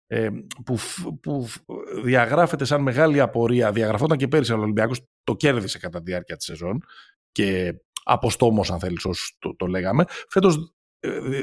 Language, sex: Greek, male